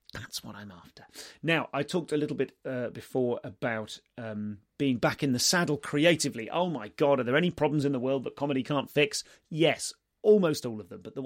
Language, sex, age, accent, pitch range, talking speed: English, male, 30-49, British, 115-150 Hz, 220 wpm